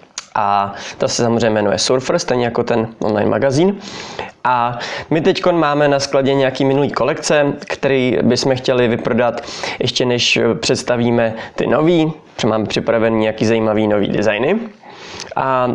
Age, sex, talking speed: 20-39, male, 140 wpm